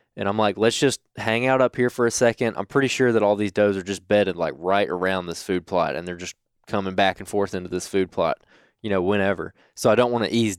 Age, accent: 20-39, American